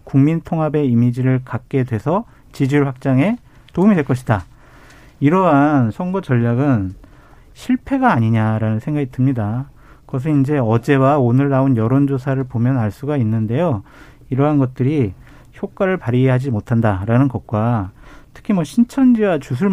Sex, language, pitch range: male, Korean, 120-165 Hz